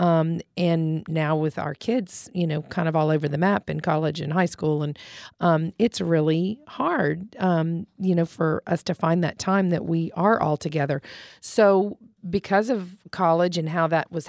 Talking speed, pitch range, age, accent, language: 195 wpm, 155-190 Hz, 40-59, American, English